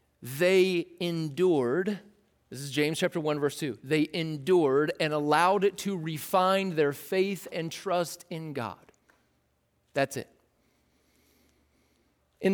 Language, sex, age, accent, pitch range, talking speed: English, male, 40-59, American, 135-195 Hz, 120 wpm